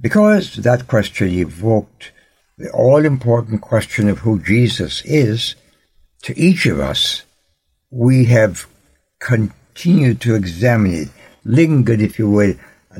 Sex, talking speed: male, 120 wpm